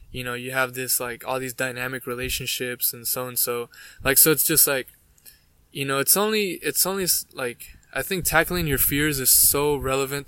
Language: English